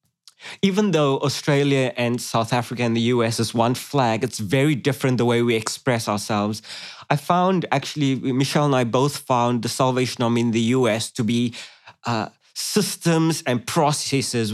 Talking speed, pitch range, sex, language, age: 165 wpm, 125-150 Hz, male, English, 20-39